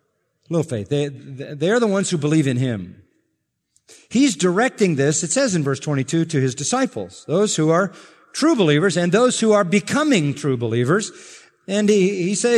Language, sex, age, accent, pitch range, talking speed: English, male, 50-69, American, 130-210 Hz, 180 wpm